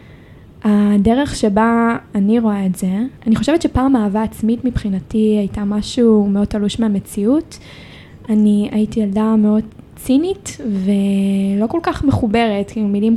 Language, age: Hebrew, 10-29